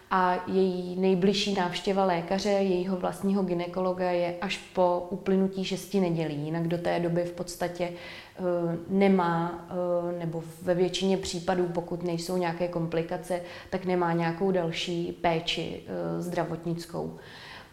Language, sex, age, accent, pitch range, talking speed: Czech, female, 20-39, native, 175-190 Hz, 120 wpm